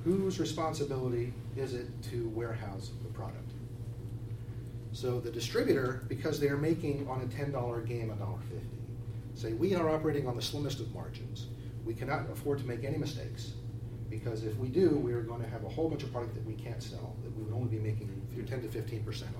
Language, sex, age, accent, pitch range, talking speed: English, male, 40-59, American, 115-125 Hz, 190 wpm